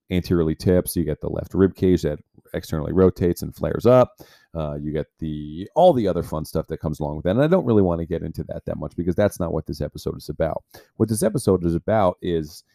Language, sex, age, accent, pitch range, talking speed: English, male, 40-59, American, 85-110 Hz, 250 wpm